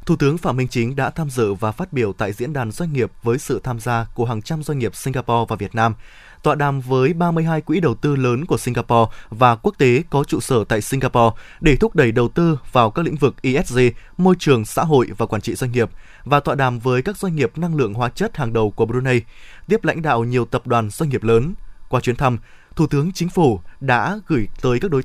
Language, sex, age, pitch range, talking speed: Vietnamese, male, 20-39, 120-160 Hz, 245 wpm